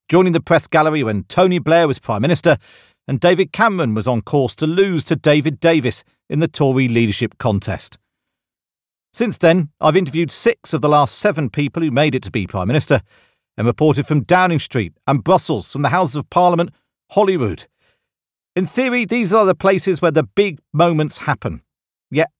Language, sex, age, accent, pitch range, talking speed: English, male, 40-59, British, 120-170 Hz, 180 wpm